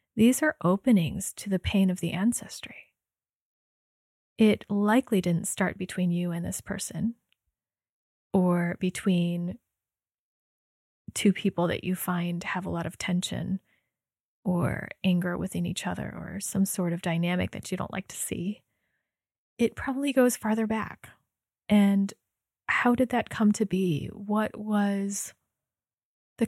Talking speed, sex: 140 wpm, female